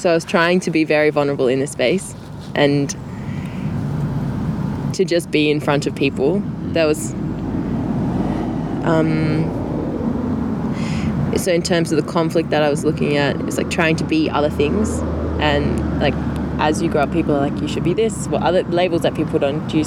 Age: 20-39